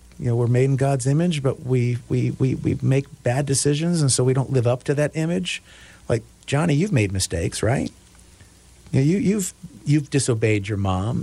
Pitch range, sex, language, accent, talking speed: 110-130 Hz, male, English, American, 205 wpm